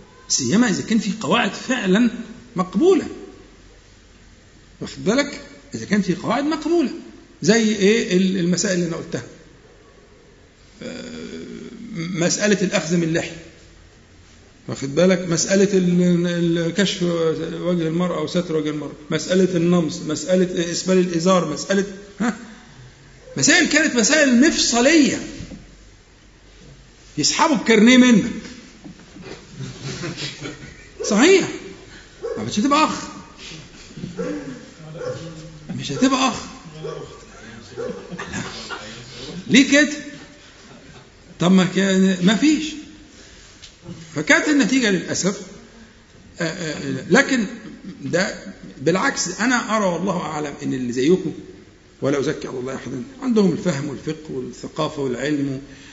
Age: 50-69